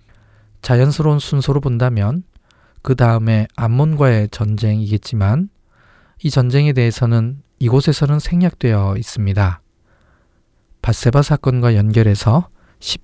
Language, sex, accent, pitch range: Korean, male, native, 105-135 Hz